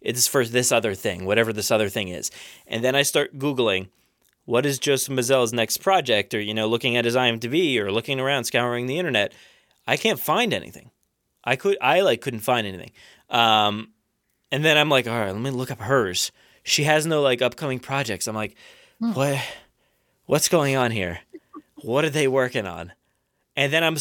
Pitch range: 125-165 Hz